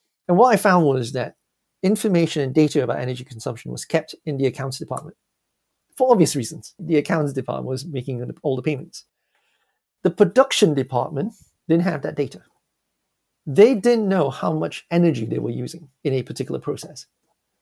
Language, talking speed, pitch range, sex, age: English, 165 wpm, 140-180 Hz, male, 40-59